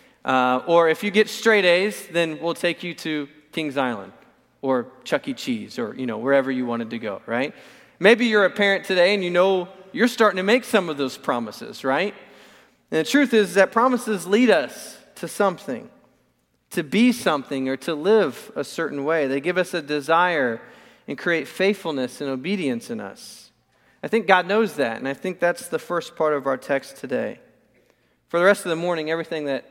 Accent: American